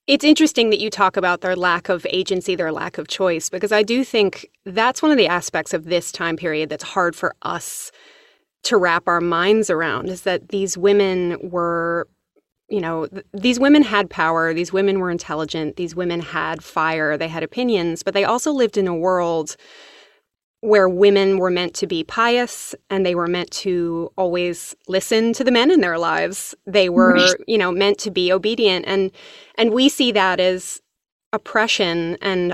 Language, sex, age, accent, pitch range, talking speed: English, female, 20-39, American, 170-210 Hz, 185 wpm